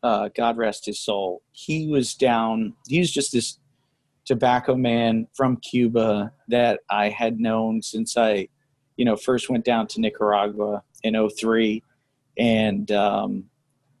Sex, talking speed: male, 140 wpm